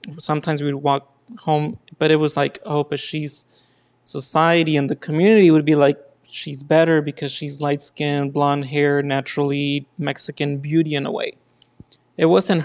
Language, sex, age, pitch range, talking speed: English, male, 20-39, 140-155 Hz, 160 wpm